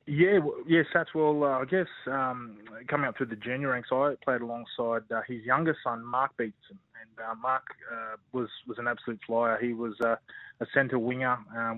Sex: male